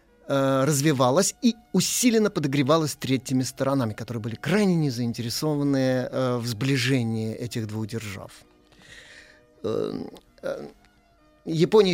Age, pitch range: 30-49, 125-160 Hz